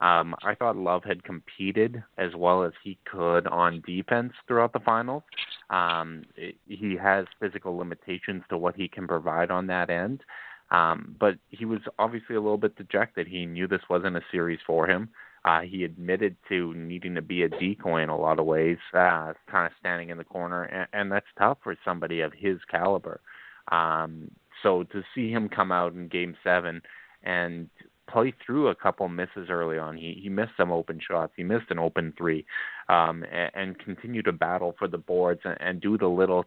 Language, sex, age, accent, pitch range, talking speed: English, male, 30-49, American, 85-100 Hz, 195 wpm